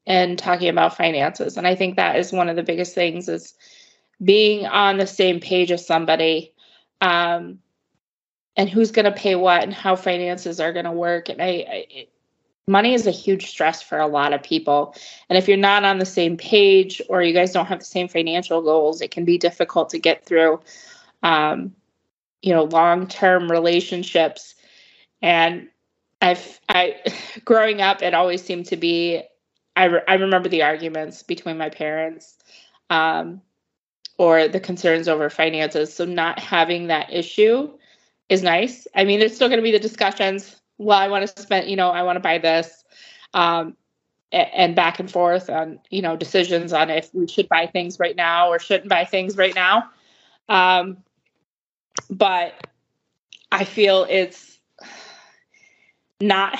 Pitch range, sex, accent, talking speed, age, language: 170-195 Hz, female, American, 170 wpm, 20-39, English